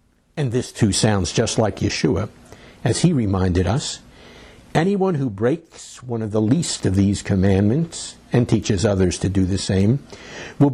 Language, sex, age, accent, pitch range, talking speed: English, male, 60-79, American, 100-135 Hz, 160 wpm